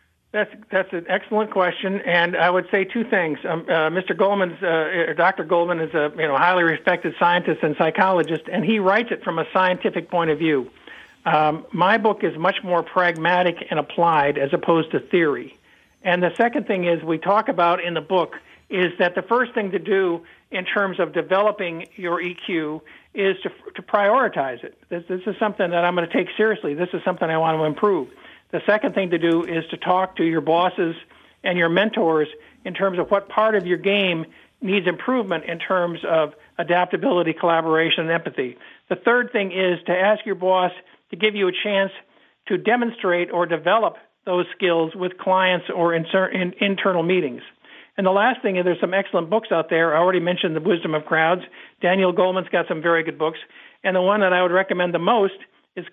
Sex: male